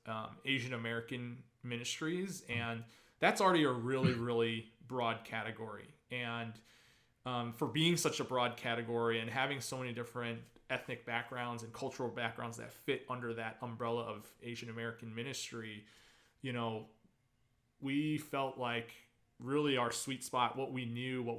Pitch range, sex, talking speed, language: 115-130 Hz, male, 145 wpm, English